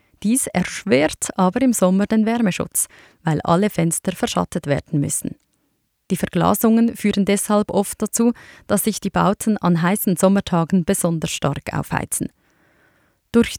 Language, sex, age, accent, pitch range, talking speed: German, female, 30-49, Swiss, 180-225 Hz, 135 wpm